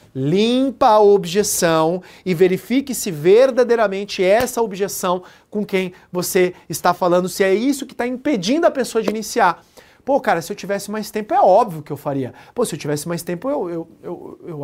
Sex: male